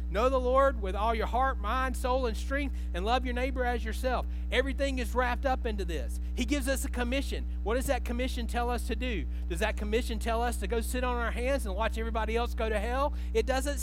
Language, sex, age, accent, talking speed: English, male, 40-59, American, 245 wpm